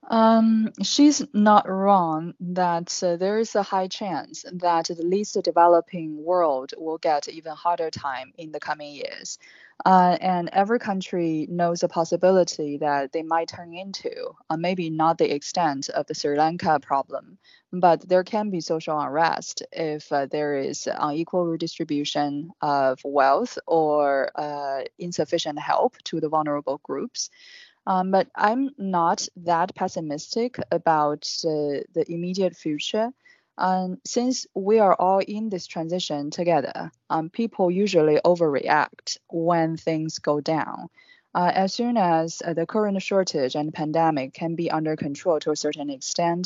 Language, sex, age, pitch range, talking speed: English, female, 20-39, 155-185 Hz, 150 wpm